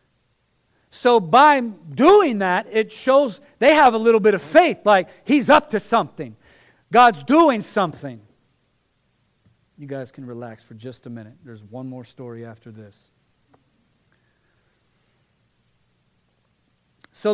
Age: 40-59